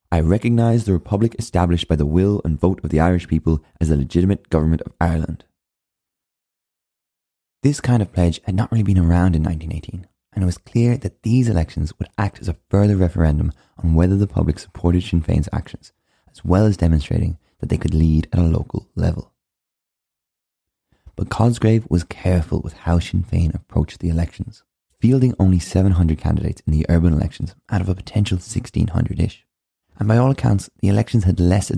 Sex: male